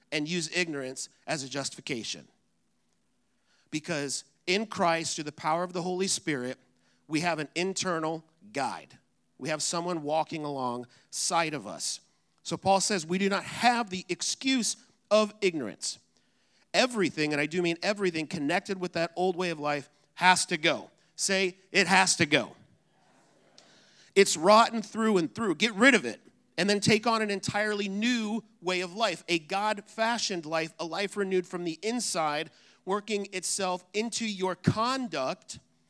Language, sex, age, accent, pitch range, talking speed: English, male, 40-59, American, 165-215 Hz, 155 wpm